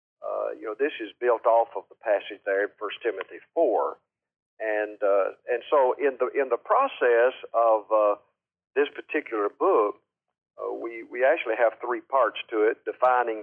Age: 50-69